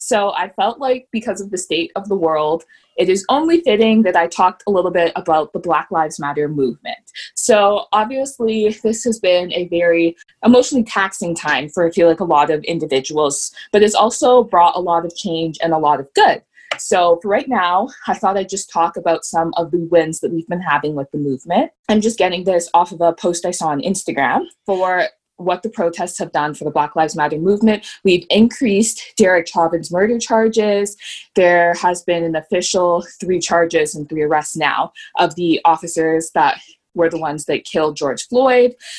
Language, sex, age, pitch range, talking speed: English, female, 20-39, 160-200 Hz, 200 wpm